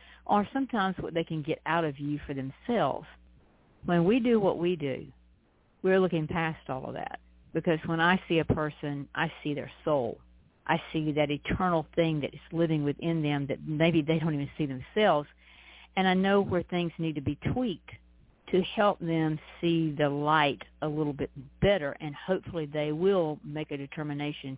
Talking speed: 185 wpm